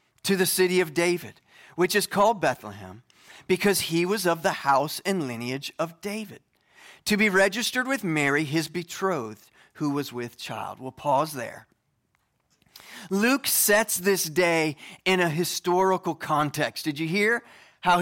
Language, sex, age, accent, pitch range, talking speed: English, male, 30-49, American, 170-225 Hz, 150 wpm